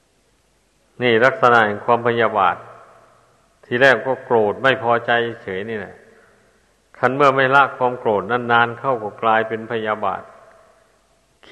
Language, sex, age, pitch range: Thai, male, 60-79, 110-125 Hz